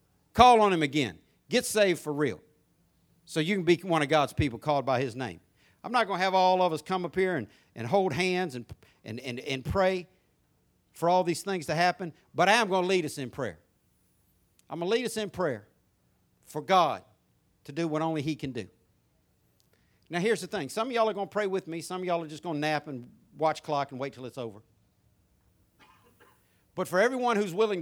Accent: American